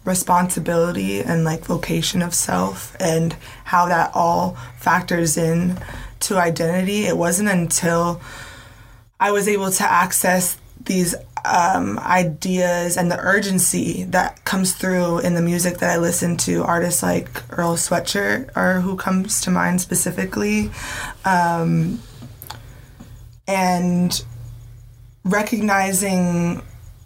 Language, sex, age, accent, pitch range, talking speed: English, female, 20-39, American, 170-190 Hz, 115 wpm